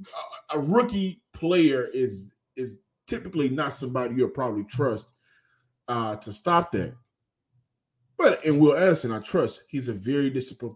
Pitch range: 110-140 Hz